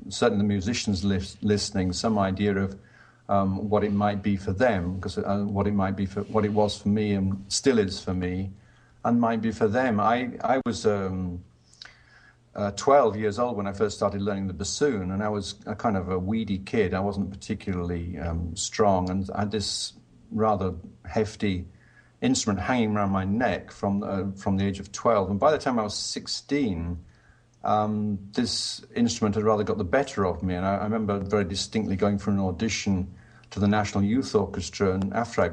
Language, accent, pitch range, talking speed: English, British, 95-115 Hz, 200 wpm